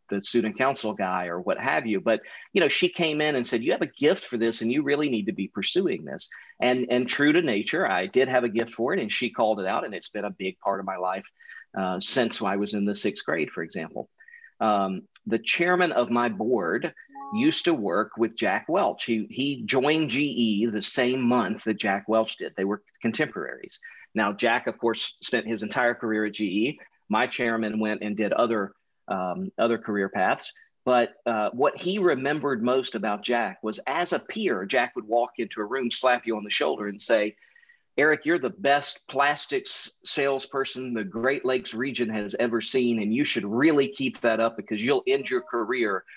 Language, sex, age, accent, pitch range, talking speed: English, male, 40-59, American, 110-135 Hz, 210 wpm